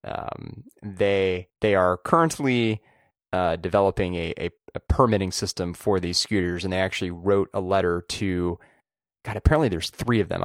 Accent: American